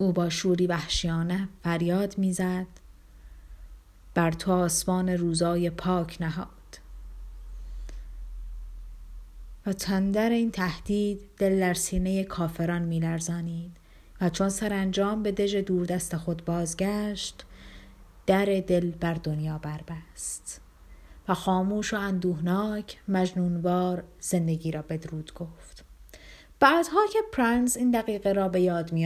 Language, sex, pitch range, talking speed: Persian, female, 170-210 Hz, 105 wpm